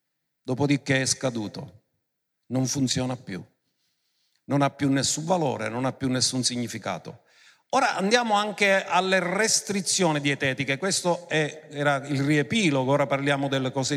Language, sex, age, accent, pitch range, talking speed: Italian, male, 50-69, native, 145-210 Hz, 130 wpm